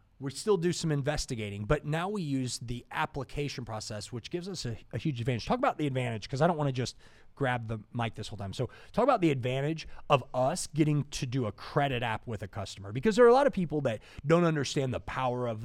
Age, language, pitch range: 30-49, English, 110-150 Hz